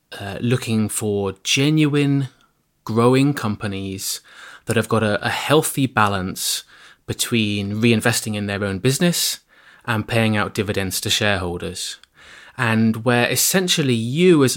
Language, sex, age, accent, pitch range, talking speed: English, male, 20-39, British, 105-130 Hz, 125 wpm